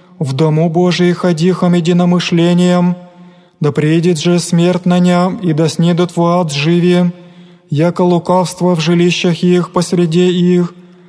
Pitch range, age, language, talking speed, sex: 175-180 Hz, 20-39, Greek, 125 wpm, male